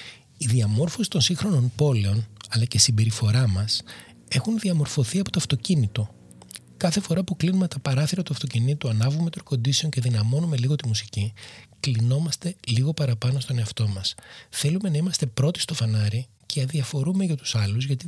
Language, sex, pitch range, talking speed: Greek, male, 115-150 Hz, 160 wpm